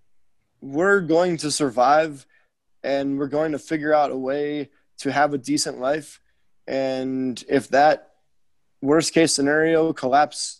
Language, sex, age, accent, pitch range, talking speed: English, male, 20-39, American, 140-165 Hz, 135 wpm